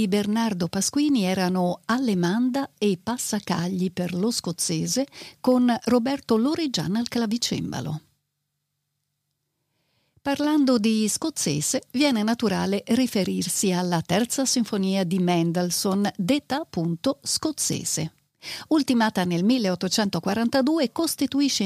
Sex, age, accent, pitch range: female, 50-69, native, 180-235 Hz